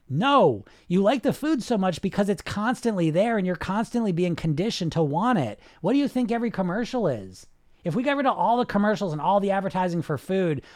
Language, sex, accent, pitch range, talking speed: English, male, American, 150-205 Hz, 225 wpm